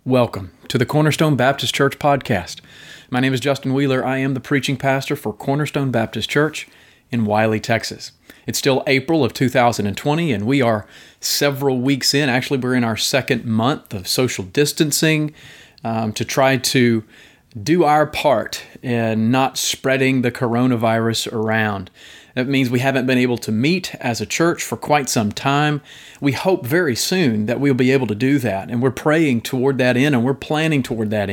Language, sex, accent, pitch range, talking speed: English, male, American, 120-150 Hz, 180 wpm